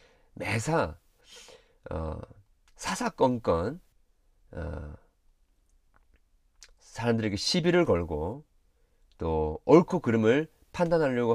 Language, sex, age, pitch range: Korean, male, 40-59, 80-135 Hz